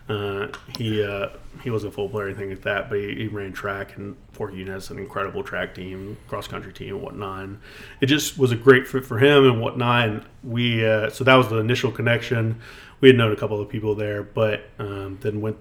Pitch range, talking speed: 105-130 Hz, 240 wpm